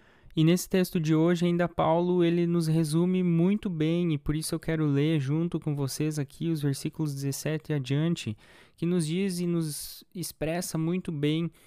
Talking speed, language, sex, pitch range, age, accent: 175 wpm, Portuguese, male, 150-180 Hz, 20-39, Brazilian